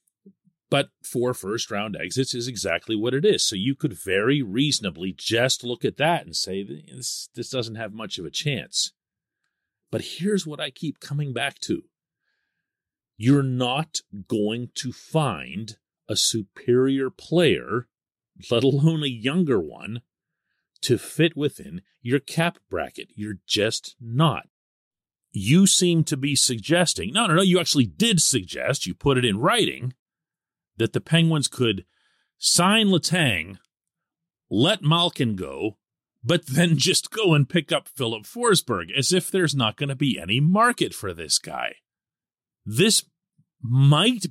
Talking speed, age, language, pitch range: 145 wpm, 40-59, English, 125-175 Hz